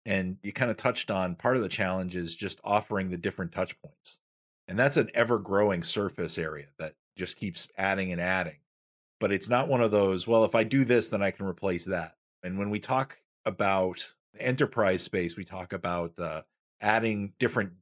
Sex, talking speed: male, 195 wpm